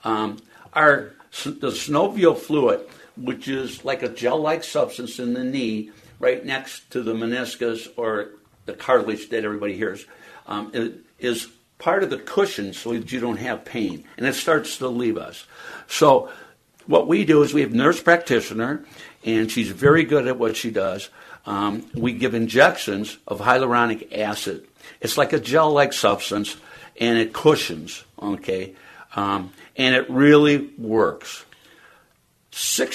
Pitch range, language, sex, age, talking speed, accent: 110-140 Hz, English, male, 60-79, 155 wpm, American